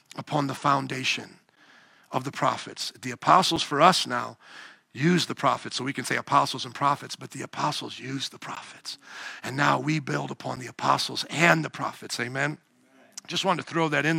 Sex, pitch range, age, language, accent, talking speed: male, 155-205 Hz, 50-69, English, American, 185 wpm